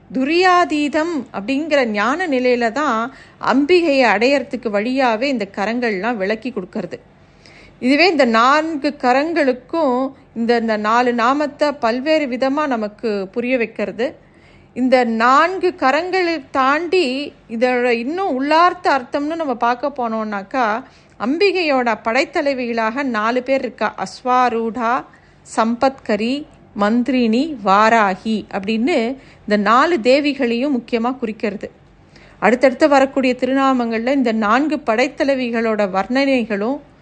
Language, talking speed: Tamil, 90 wpm